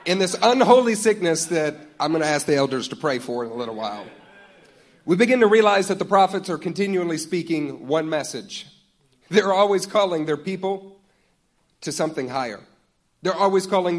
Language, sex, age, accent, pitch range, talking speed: English, male, 40-59, American, 150-195 Hz, 175 wpm